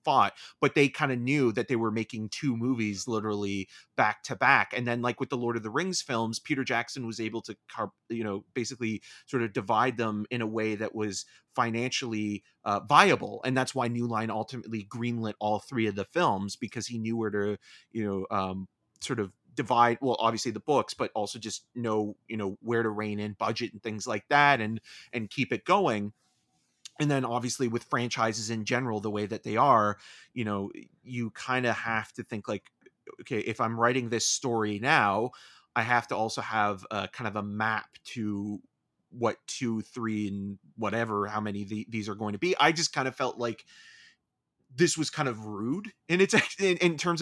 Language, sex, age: English, male, 30-49